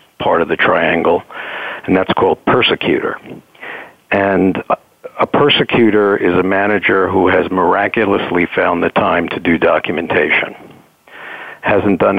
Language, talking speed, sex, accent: English, 125 wpm, male, American